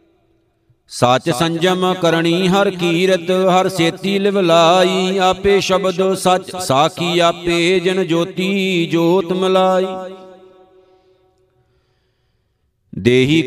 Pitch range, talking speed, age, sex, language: 170-185 Hz, 80 wpm, 50-69, male, Punjabi